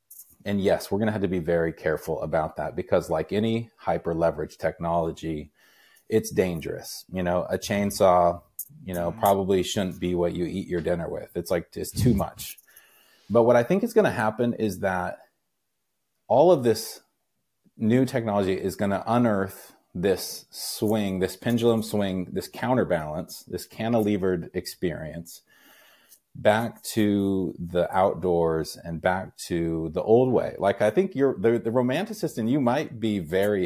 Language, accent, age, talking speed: English, American, 30-49, 160 wpm